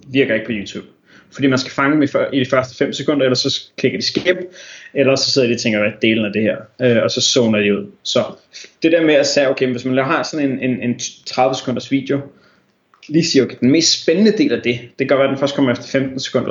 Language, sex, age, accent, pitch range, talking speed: Danish, male, 20-39, native, 120-140 Hz, 255 wpm